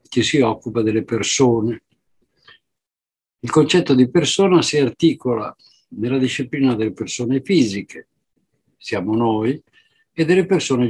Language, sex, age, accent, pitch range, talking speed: Italian, male, 60-79, native, 110-145 Hz, 110 wpm